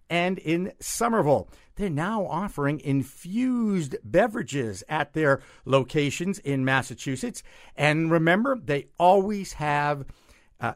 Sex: male